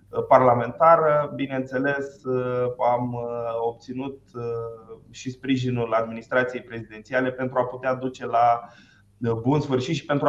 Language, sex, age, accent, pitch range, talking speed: Romanian, male, 20-39, native, 125-150 Hz, 100 wpm